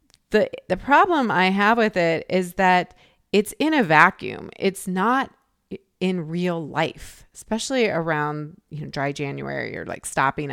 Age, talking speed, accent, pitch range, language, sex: 30-49, 155 wpm, American, 165-205 Hz, English, female